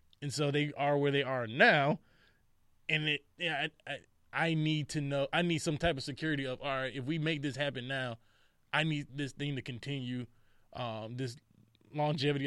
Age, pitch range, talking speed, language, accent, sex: 20-39, 120-150 Hz, 195 wpm, English, American, male